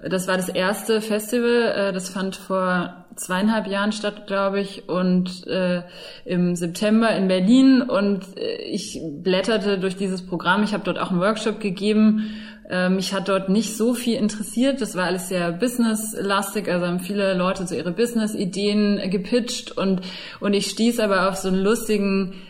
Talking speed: 160 wpm